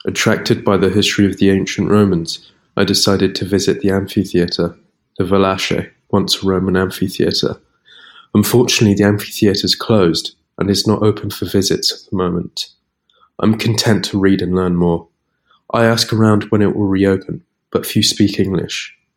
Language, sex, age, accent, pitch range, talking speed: Italian, male, 20-39, British, 95-110 Hz, 165 wpm